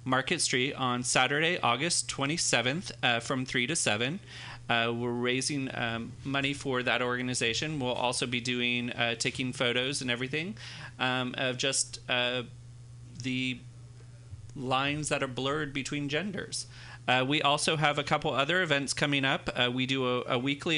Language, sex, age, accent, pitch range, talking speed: English, male, 30-49, American, 120-140 Hz, 160 wpm